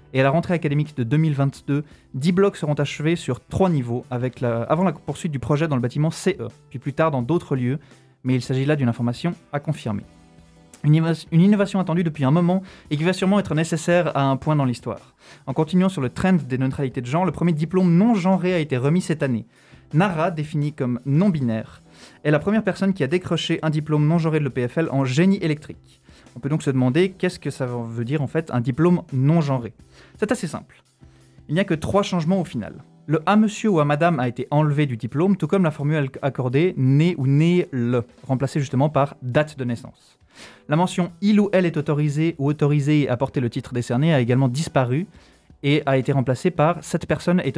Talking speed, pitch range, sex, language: 220 wpm, 130-170 Hz, male, French